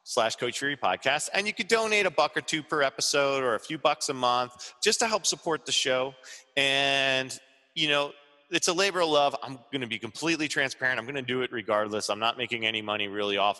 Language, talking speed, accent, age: English, 235 wpm, American, 30-49